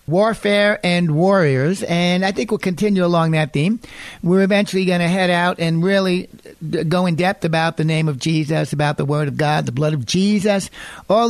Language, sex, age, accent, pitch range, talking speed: English, male, 60-79, American, 155-185 Hz, 195 wpm